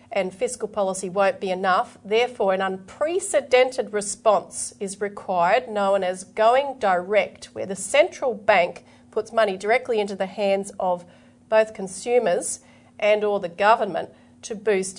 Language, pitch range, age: English, 190-235 Hz, 40-59